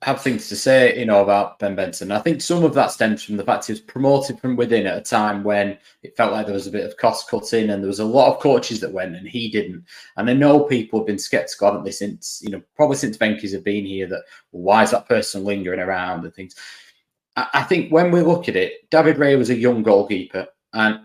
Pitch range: 105-145 Hz